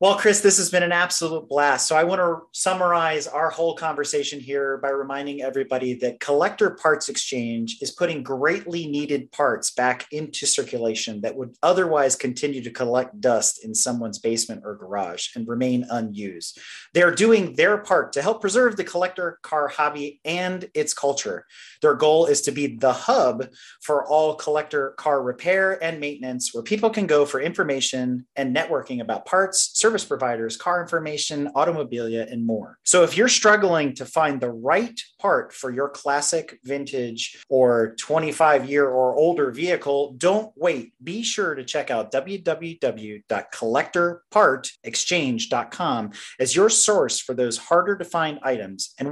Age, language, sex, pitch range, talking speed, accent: 30-49, English, male, 130-180 Hz, 155 wpm, American